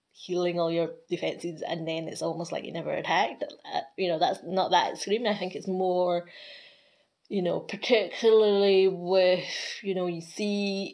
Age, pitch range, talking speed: 20-39, 165-185 Hz, 165 wpm